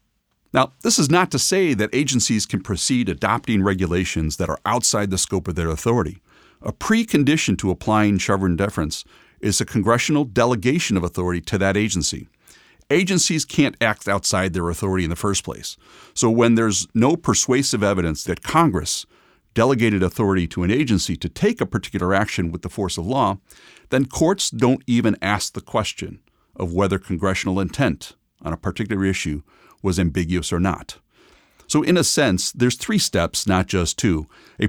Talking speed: 170 wpm